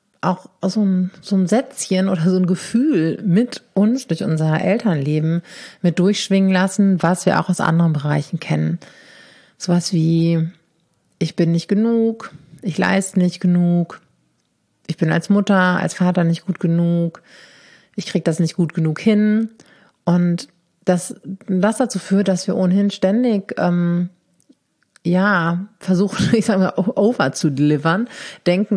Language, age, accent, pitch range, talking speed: German, 30-49, German, 165-195 Hz, 140 wpm